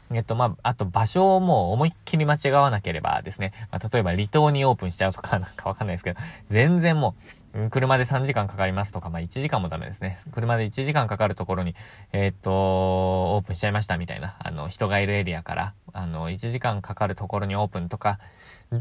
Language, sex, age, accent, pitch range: Japanese, male, 20-39, native, 95-130 Hz